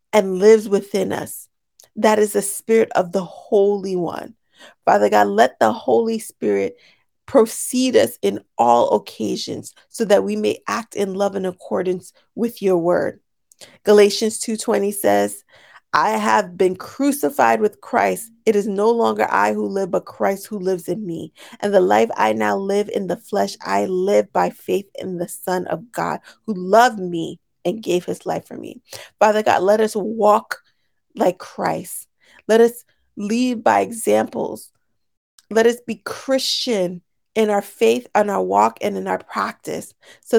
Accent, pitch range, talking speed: American, 180-225 Hz, 165 wpm